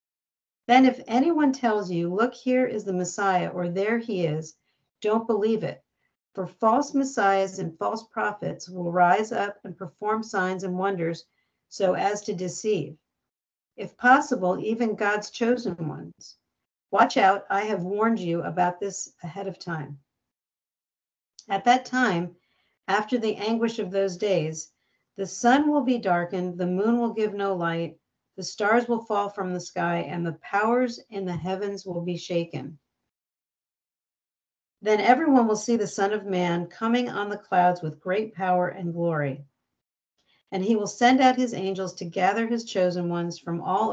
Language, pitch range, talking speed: English, 175-220 Hz, 165 wpm